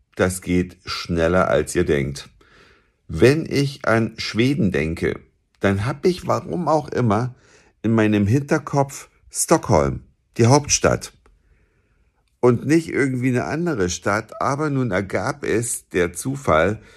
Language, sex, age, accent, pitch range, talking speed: German, male, 50-69, German, 95-135 Hz, 125 wpm